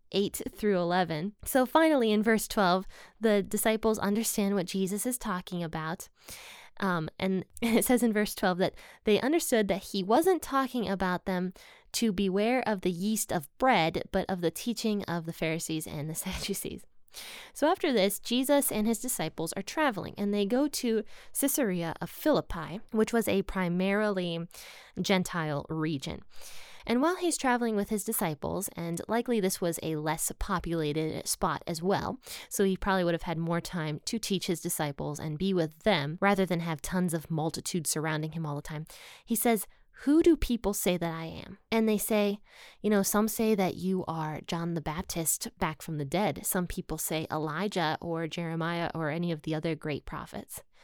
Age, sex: 10-29, female